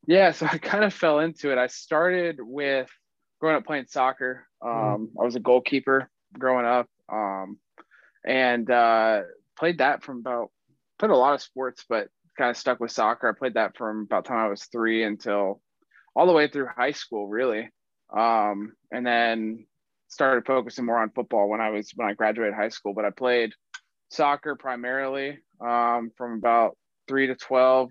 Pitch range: 110-130 Hz